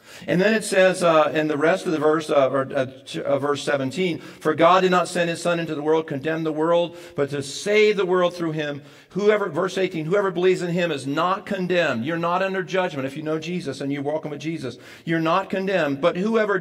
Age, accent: 50-69, American